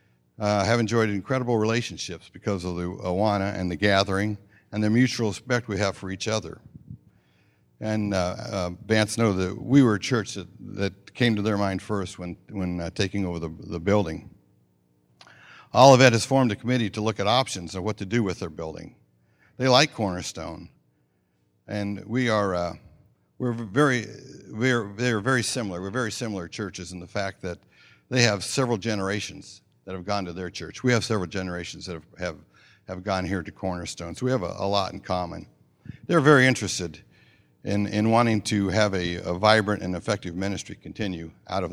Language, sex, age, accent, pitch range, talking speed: English, male, 60-79, American, 90-115 Hz, 185 wpm